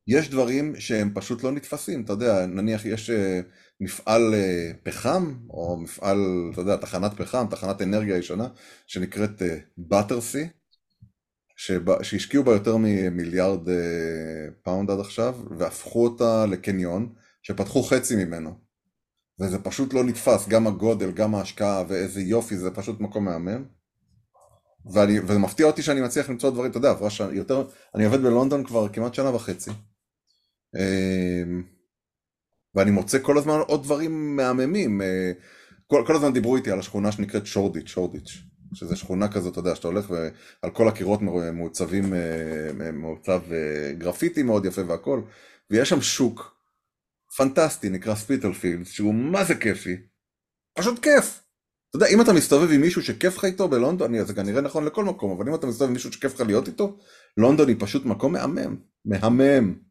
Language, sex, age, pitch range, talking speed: Hebrew, male, 30-49, 95-125 Hz, 130 wpm